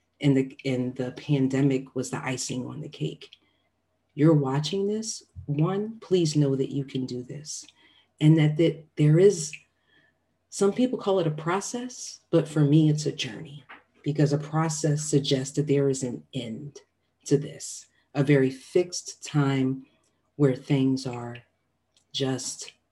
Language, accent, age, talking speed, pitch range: English, American, 40-59, 150 wpm, 130-160 Hz